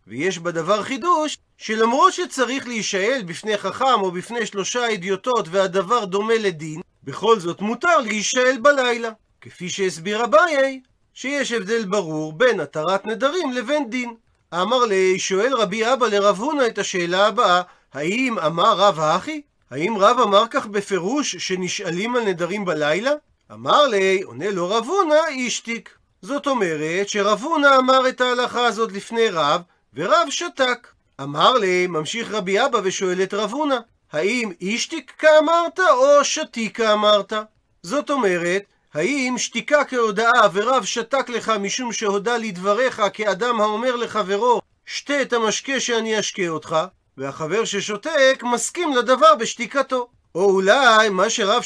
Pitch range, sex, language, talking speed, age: 195-260 Hz, male, Hebrew, 135 wpm, 40-59